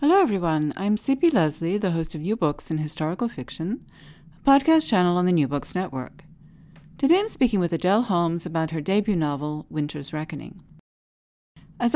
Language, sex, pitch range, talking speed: English, female, 155-215 Hz, 170 wpm